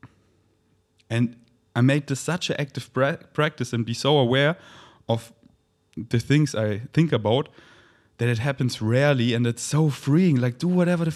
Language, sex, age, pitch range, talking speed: English, male, 20-39, 125-170 Hz, 165 wpm